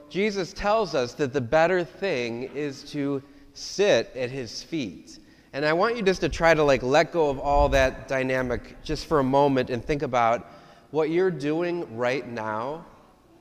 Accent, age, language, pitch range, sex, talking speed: American, 30-49, English, 115-155 Hz, male, 180 wpm